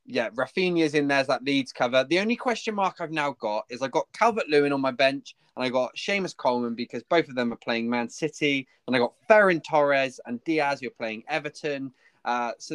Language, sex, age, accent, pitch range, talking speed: English, male, 20-39, British, 130-170 Hz, 225 wpm